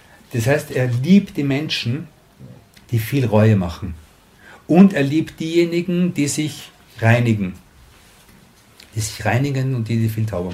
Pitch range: 110-140 Hz